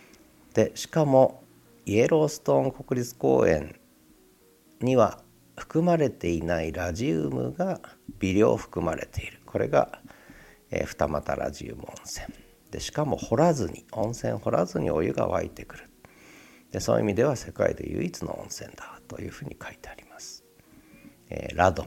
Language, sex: Japanese, male